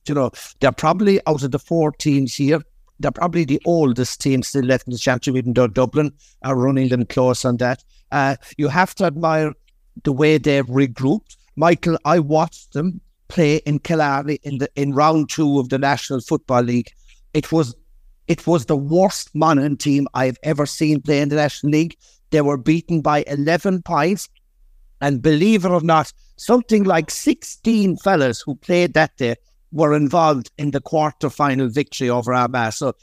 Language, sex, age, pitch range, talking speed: English, male, 60-79, 135-170 Hz, 180 wpm